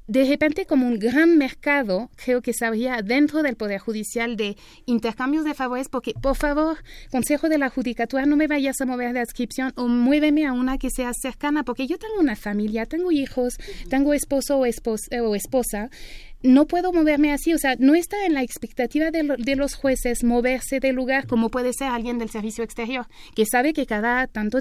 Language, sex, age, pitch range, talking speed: Spanish, female, 30-49, 235-290 Hz, 200 wpm